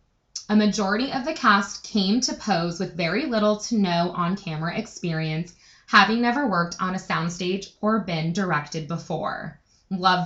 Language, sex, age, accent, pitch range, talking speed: English, female, 20-39, American, 170-215 Hz, 150 wpm